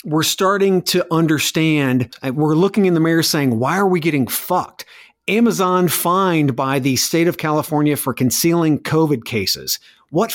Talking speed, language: 155 wpm, English